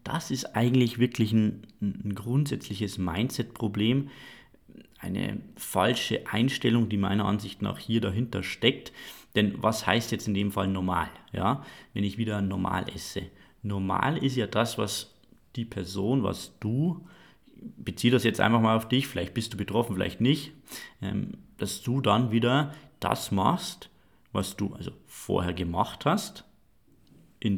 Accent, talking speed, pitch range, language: German, 150 wpm, 100-125 Hz, German